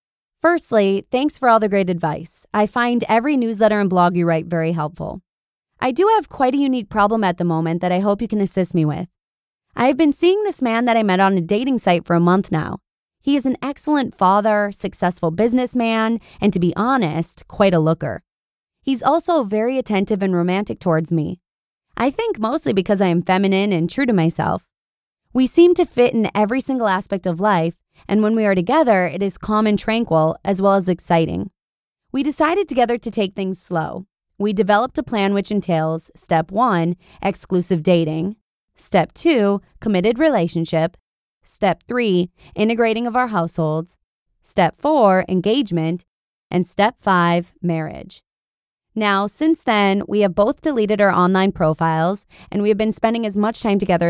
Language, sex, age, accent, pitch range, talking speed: English, female, 20-39, American, 175-230 Hz, 180 wpm